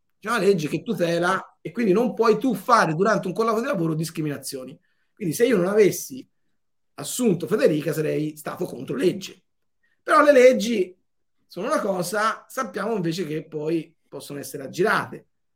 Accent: native